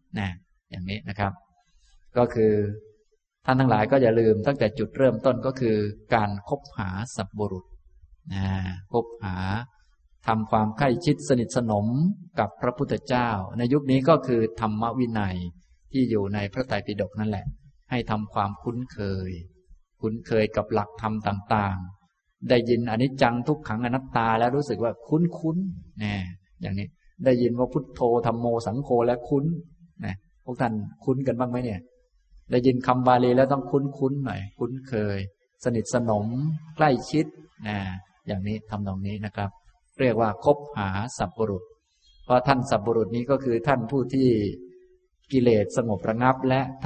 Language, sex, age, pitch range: Thai, male, 20-39, 105-130 Hz